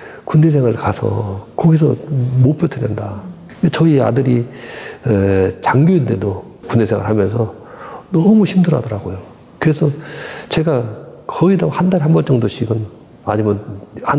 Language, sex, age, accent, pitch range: Korean, male, 40-59, native, 105-155 Hz